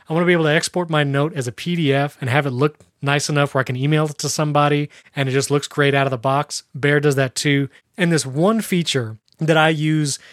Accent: American